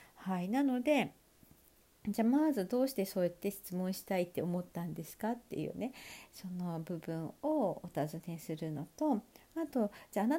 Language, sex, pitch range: Japanese, female, 180-260 Hz